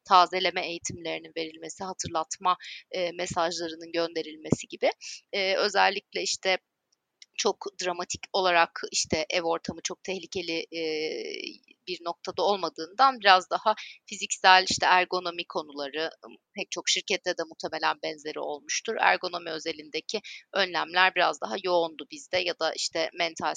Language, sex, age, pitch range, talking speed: Turkish, female, 30-49, 170-200 Hz, 120 wpm